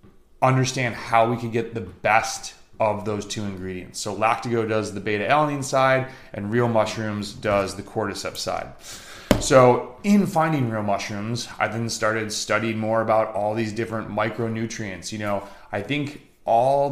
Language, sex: English, male